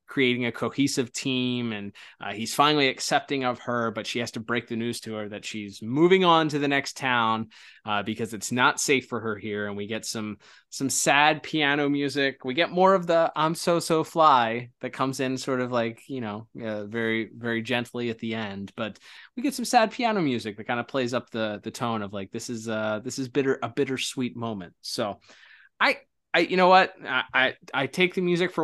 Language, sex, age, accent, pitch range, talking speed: English, male, 20-39, American, 110-135 Hz, 230 wpm